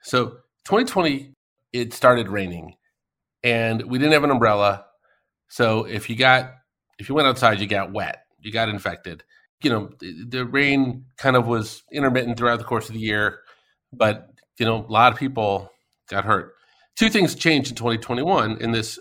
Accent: American